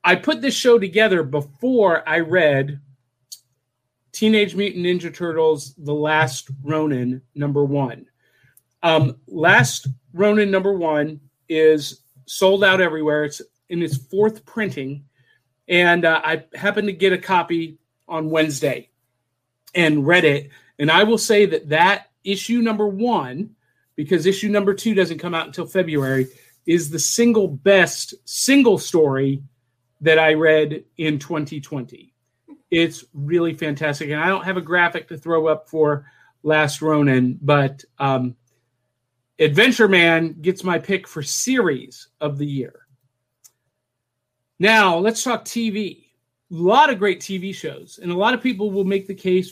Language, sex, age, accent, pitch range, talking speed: English, male, 40-59, American, 140-190 Hz, 145 wpm